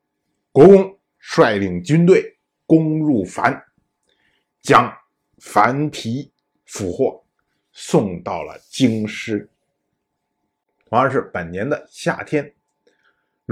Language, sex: Chinese, male